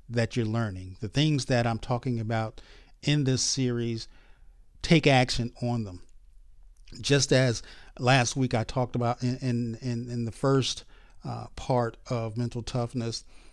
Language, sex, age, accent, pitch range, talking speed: English, male, 50-69, American, 110-135 Hz, 145 wpm